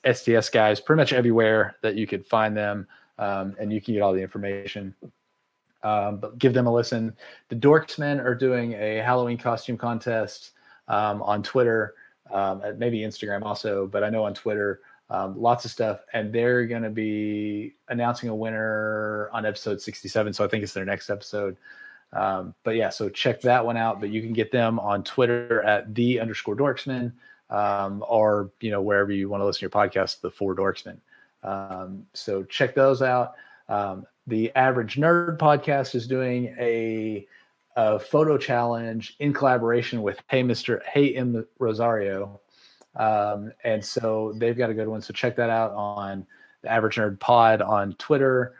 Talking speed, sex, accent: 175 wpm, male, American